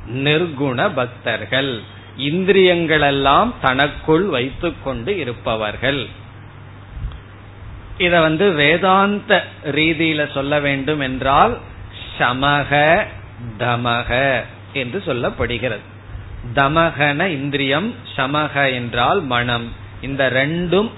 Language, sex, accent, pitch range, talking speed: Tamil, male, native, 120-155 Hz, 70 wpm